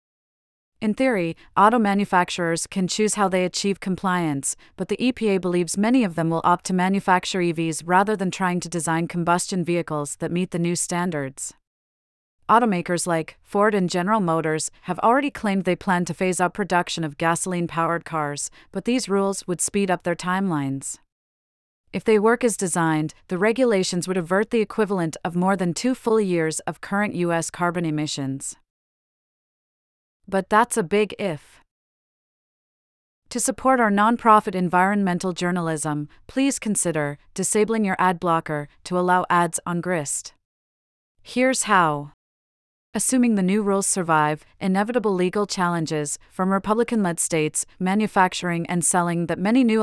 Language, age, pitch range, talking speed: English, 30-49, 165-200 Hz, 150 wpm